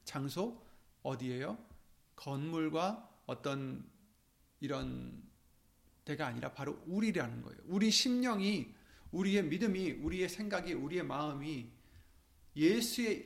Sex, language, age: male, Korean, 40-59